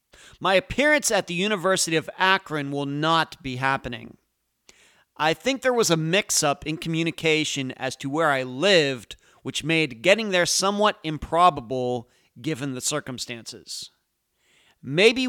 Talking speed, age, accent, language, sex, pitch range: 135 wpm, 40-59, American, English, male, 135-190 Hz